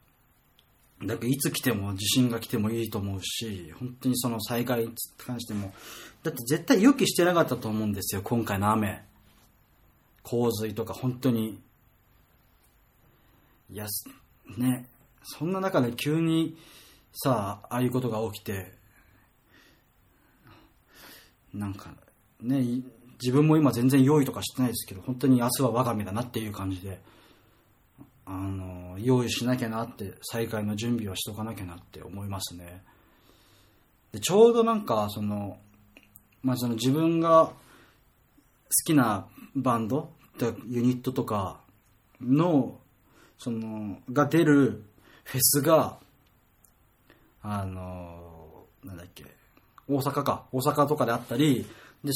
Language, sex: Japanese, male